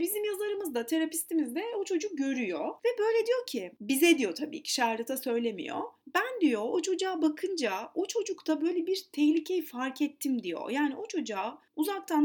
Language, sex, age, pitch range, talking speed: Turkish, female, 30-49, 255-360 Hz, 170 wpm